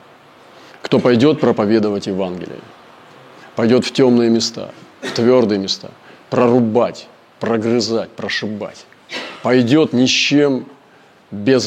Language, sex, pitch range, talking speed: Russian, male, 105-125 Hz, 100 wpm